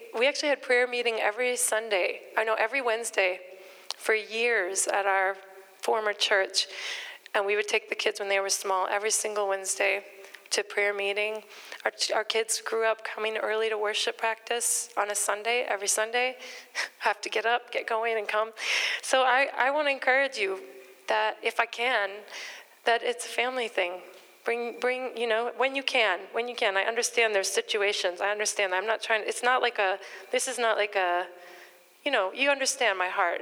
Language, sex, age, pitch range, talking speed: English, female, 30-49, 195-235 Hz, 190 wpm